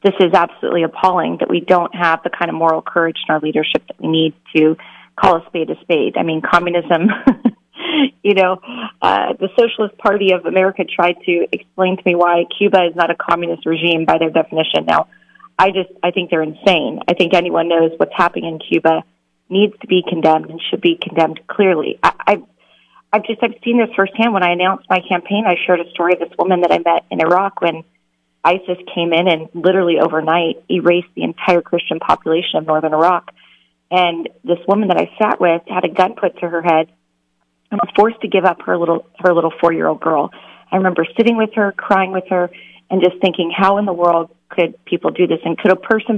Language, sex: English, female